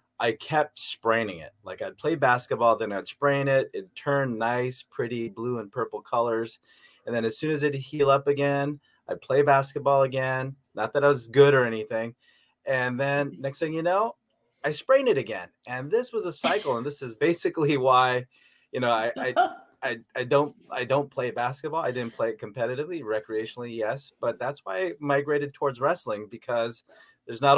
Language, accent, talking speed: English, American, 190 wpm